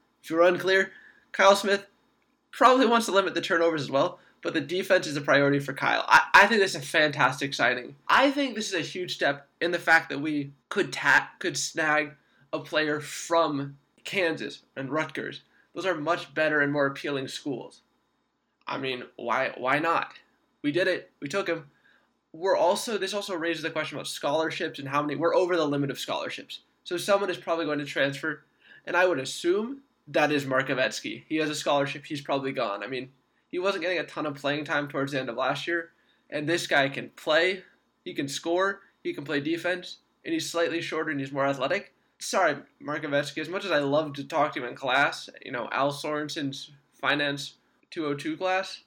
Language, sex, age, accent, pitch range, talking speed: English, male, 20-39, American, 140-170 Hz, 205 wpm